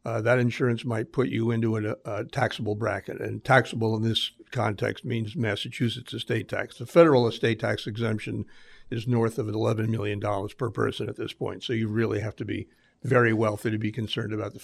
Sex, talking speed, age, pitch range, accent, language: male, 195 wpm, 60-79, 110-125 Hz, American, English